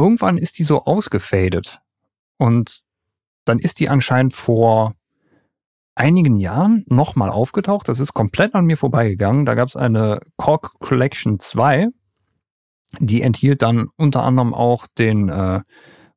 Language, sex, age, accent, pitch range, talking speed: German, male, 50-69, German, 105-145 Hz, 135 wpm